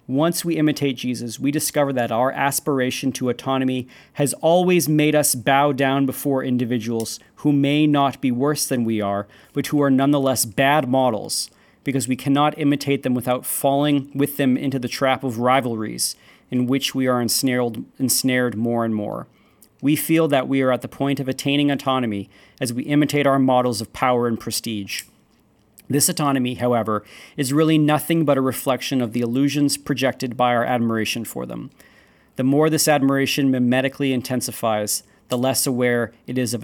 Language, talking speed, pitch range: English, 175 wpm, 125-145 Hz